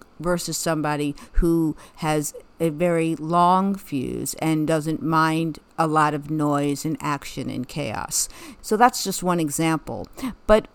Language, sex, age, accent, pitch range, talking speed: English, female, 50-69, American, 160-190 Hz, 140 wpm